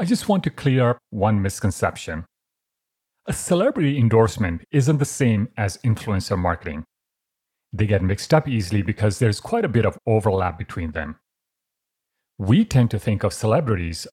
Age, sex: 40-59, male